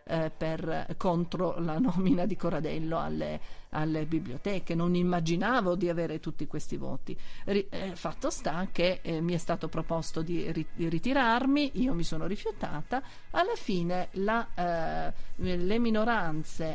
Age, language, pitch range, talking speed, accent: 40-59, Italian, 165-200 Hz, 130 wpm, native